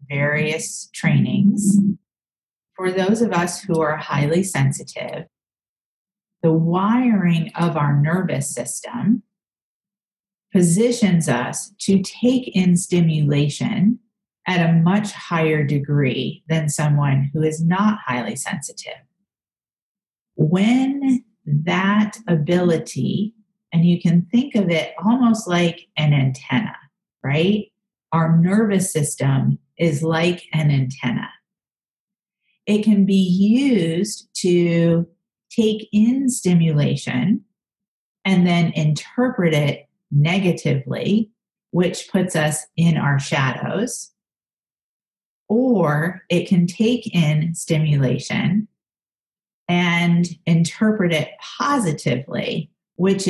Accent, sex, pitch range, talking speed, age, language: American, female, 155-205 Hz, 95 wpm, 40-59, English